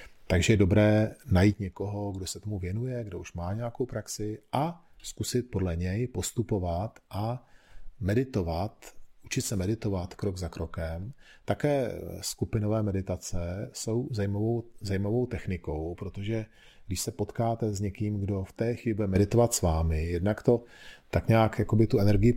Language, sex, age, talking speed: Czech, male, 40-59, 145 wpm